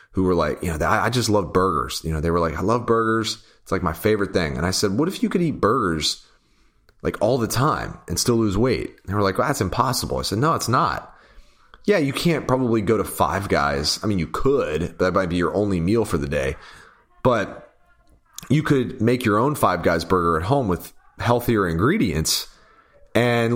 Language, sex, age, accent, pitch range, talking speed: English, male, 30-49, American, 90-125 Hz, 220 wpm